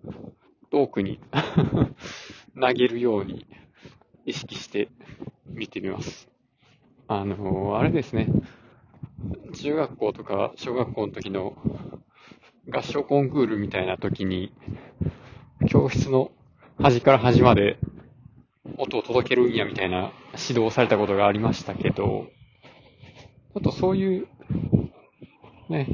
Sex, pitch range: male, 105-145 Hz